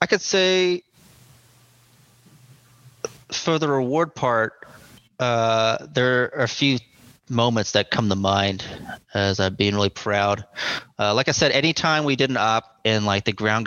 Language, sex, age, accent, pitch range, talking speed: English, male, 30-49, American, 100-120 Hz, 160 wpm